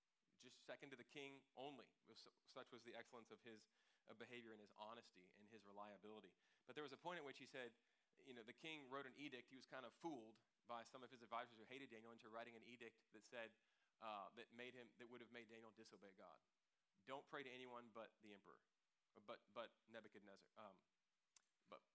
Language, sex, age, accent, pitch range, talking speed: English, male, 30-49, American, 110-125 Hz, 210 wpm